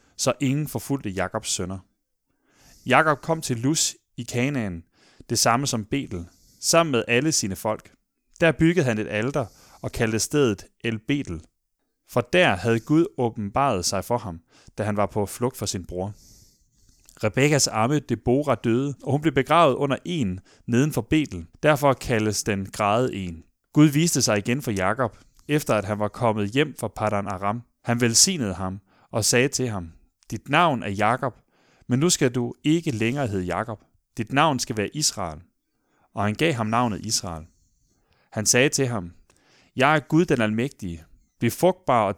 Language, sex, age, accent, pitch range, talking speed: Danish, male, 30-49, native, 105-140 Hz, 170 wpm